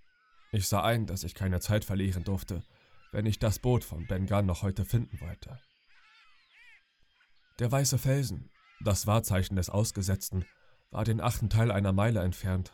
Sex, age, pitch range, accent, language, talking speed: male, 30-49, 95-115 Hz, German, German, 160 wpm